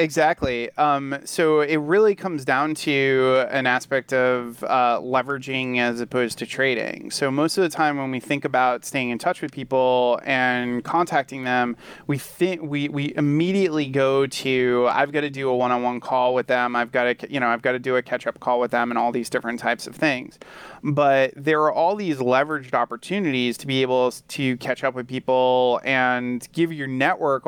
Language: English